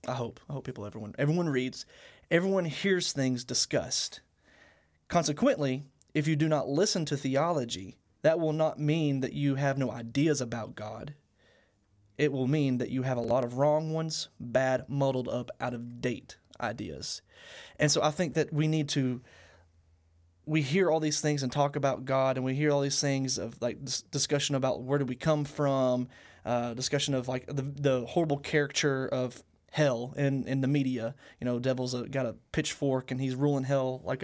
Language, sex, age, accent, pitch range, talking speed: English, male, 20-39, American, 125-150 Hz, 185 wpm